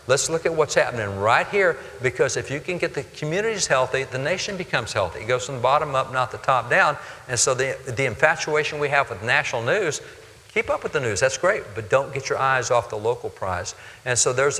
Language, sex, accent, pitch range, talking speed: English, male, American, 120-150 Hz, 240 wpm